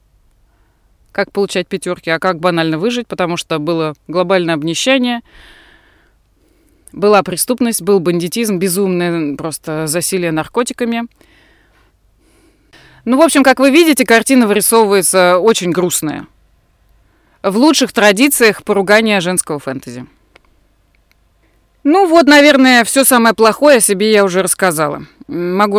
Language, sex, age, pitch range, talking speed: Russian, female, 20-39, 165-220 Hz, 110 wpm